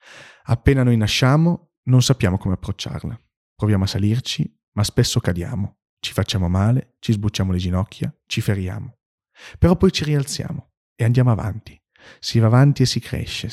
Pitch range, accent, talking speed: 105-135 Hz, native, 155 wpm